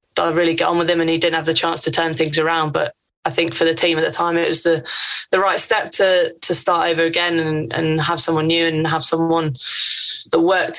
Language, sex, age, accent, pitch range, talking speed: English, female, 20-39, British, 160-170 Hz, 255 wpm